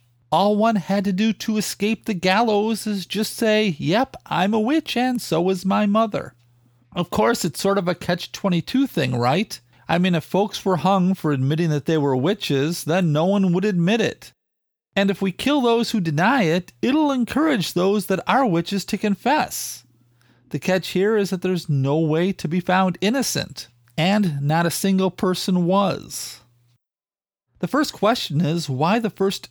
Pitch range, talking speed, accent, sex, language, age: 155-205 Hz, 180 wpm, American, male, English, 40-59